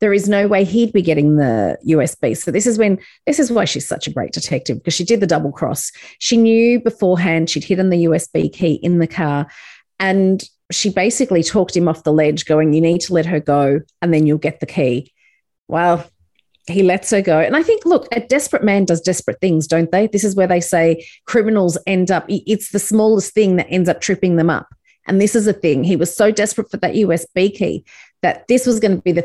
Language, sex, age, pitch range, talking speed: English, female, 30-49, 170-225 Hz, 235 wpm